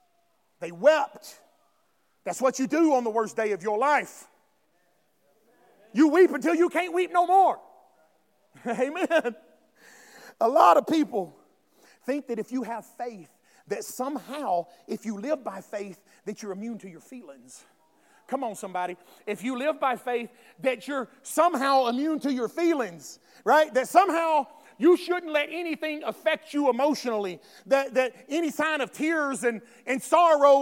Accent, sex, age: American, male, 40-59